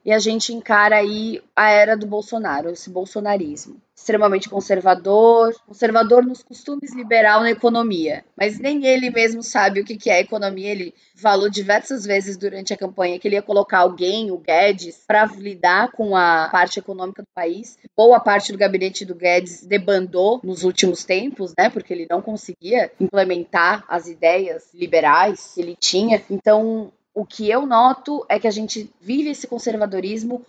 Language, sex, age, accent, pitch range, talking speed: Portuguese, female, 20-39, Brazilian, 185-225 Hz, 170 wpm